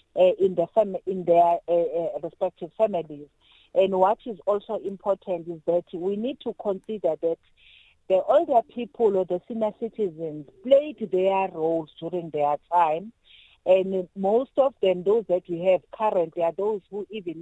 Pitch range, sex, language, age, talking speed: 170-215 Hz, female, English, 50-69, 165 wpm